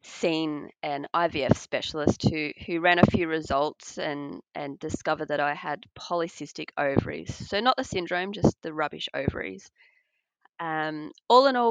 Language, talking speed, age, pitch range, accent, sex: English, 155 wpm, 20-39, 155-205 Hz, Australian, female